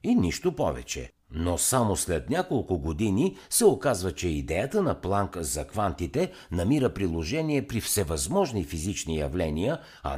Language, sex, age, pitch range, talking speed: Bulgarian, male, 60-79, 80-110 Hz, 135 wpm